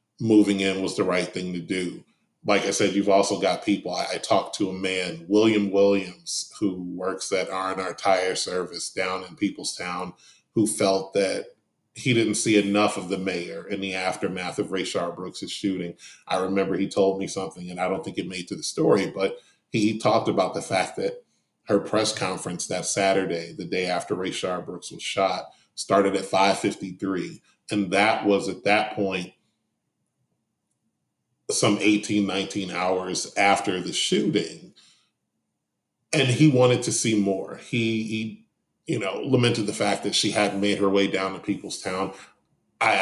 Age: 30-49